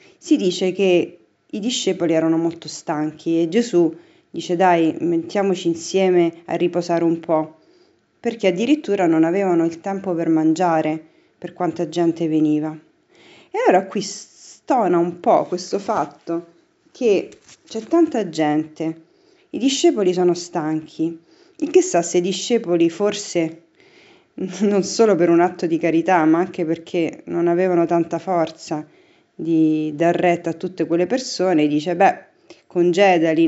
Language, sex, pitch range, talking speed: Italian, female, 165-200 Hz, 140 wpm